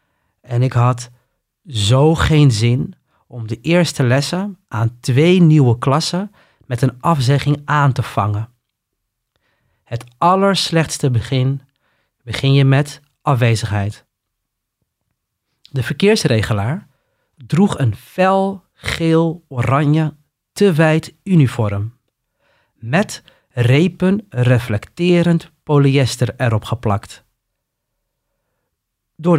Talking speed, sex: 90 wpm, male